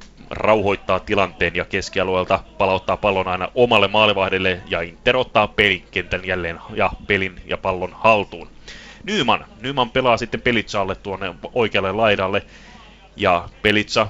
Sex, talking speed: male, 120 wpm